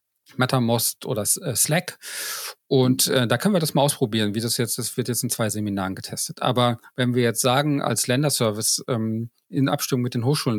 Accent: German